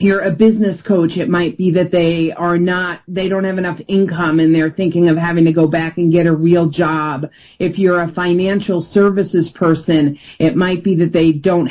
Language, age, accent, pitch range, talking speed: English, 40-59, American, 170-230 Hz, 210 wpm